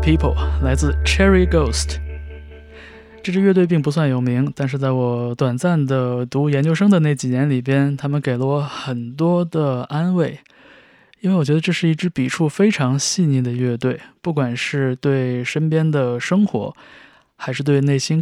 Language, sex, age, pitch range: Chinese, male, 20-39, 125-150 Hz